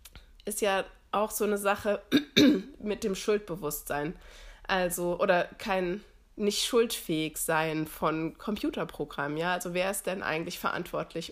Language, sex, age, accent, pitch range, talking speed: German, female, 20-39, German, 175-210 Hz, 125 wpm